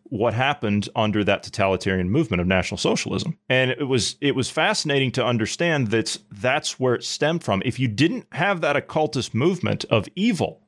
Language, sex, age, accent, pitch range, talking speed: English, male, 30-49, American, 105-140 Hz, 180 wpm